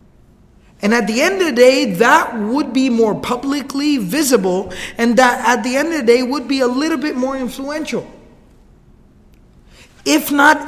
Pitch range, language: 195-260 Hz, English